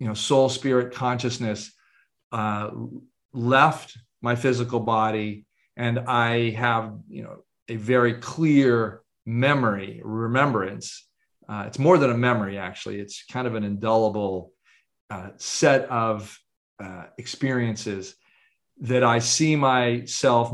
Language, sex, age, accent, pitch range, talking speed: English, male, 40-59, American, 115-130 Hz, 120 wpm